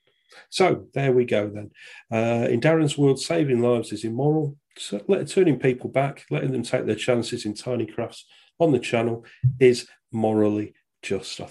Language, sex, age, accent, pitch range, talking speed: English, male, 40-59, British, 120-150 Hz, 160 wpm